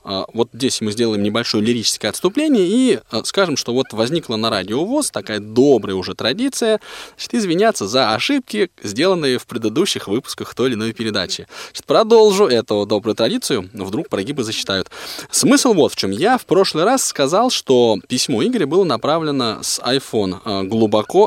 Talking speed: 160 wpm